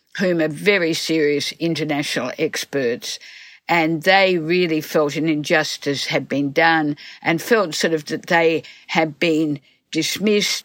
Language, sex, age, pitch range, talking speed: English, female, 60-79, 150-185 Hz, 135 wpm